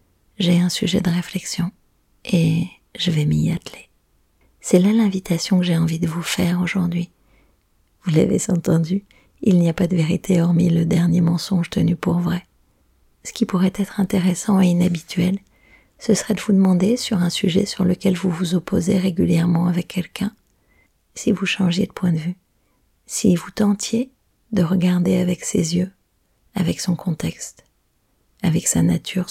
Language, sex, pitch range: French, female, 170-195 Hz